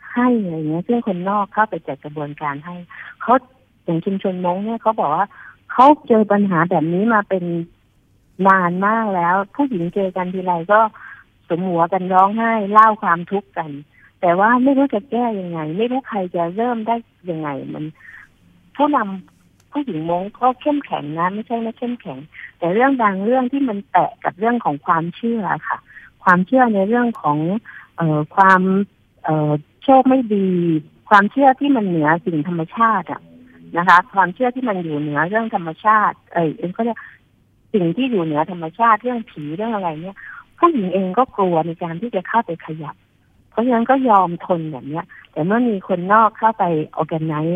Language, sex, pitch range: Thai, female, 160-220 Hz